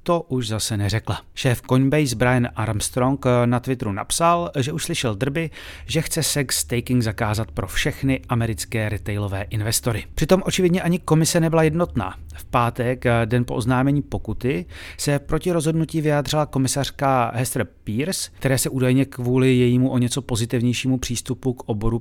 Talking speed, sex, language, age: 150 wpm, male, Czech, 30-49